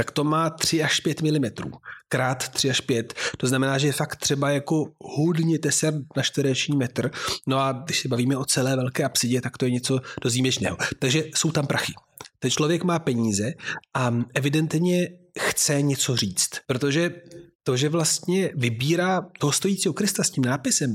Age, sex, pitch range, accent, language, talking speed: 30-49, male, 130-160 Hz, native, Czech, 175 wpm